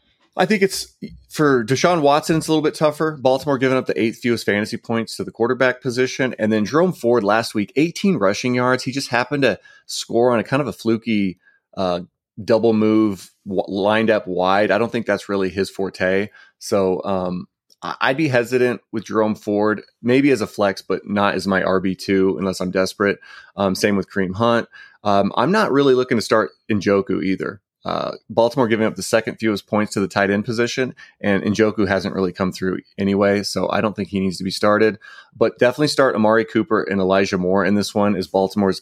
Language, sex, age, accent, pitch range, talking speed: English, male, 30-49, American, 95-125 Hz, 205 wpm